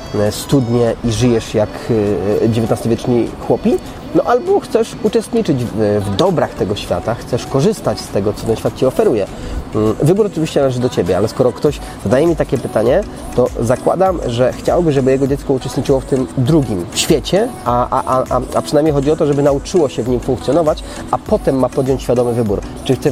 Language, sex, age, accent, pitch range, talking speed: Polish, male, 30-49, native, 115-145 Hz, 180 wpm